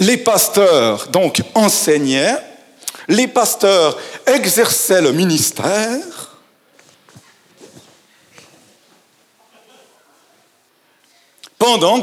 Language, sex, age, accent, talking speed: French, male, 50-69, French, 50 wpm